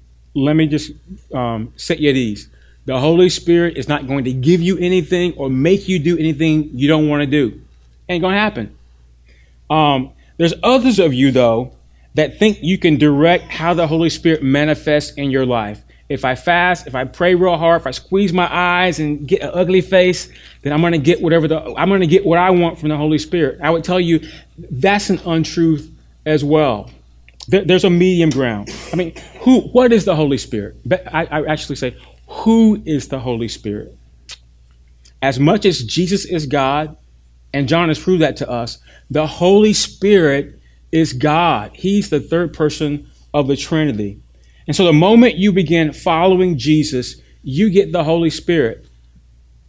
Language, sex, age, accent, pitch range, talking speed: English, male, 30-49, American, 130-180 Hz, 185 wpm